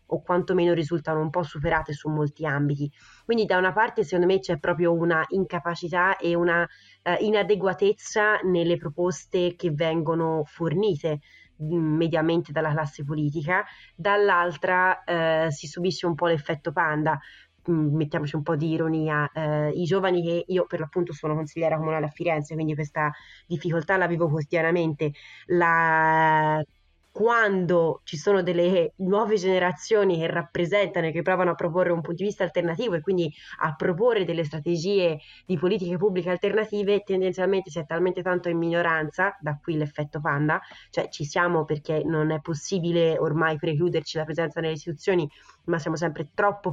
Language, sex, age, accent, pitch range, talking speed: Italian, female, 20-39, native, 160-180 Hz, 155 wpm